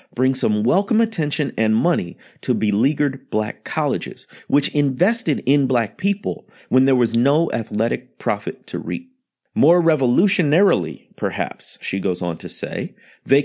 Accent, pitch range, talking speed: American, 115-170 Hz, 145 wpm